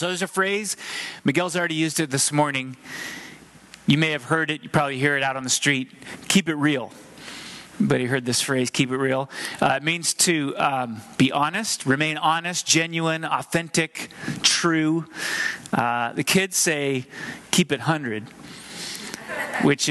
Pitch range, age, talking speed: 135-165 Hz, 30-49, 165 wpm